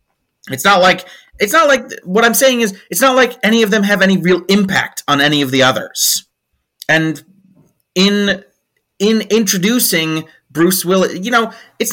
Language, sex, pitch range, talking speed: English, male, 155-225 Hz, 170 wpm